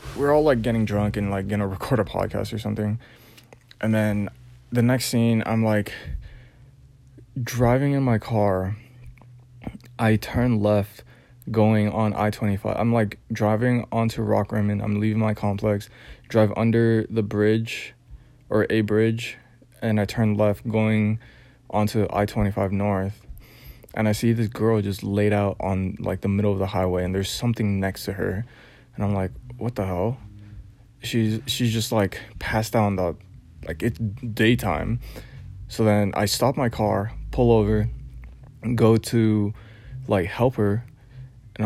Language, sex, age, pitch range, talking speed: English, male, 20-39, 105-120 Hz, 155 wpm